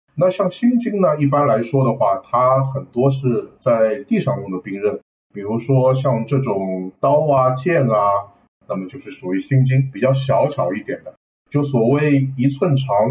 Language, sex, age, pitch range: Chinese, male, 50-69, 125-160 Hz